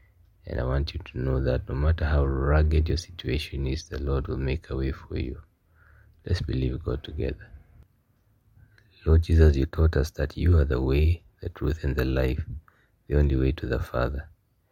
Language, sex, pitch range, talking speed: English, male, 70-90 Hz, 190 wpm